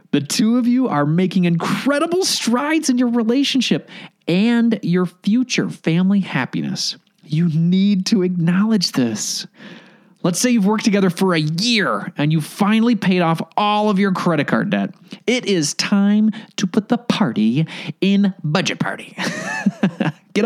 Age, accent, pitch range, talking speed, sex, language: 30-49, American, 175-220 Hz, 150 wpm, male, English